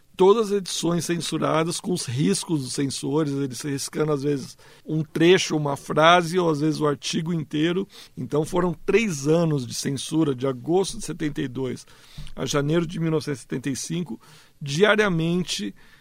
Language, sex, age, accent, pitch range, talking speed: Portuguese, male, 60-79, Brazilian, 145-180 Hz, 145 wpm